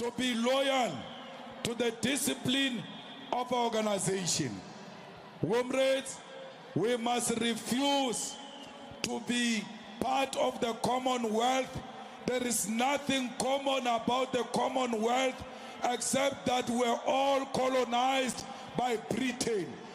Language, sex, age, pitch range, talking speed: English, male, 50-69, 235-270 Hz, 100 wpm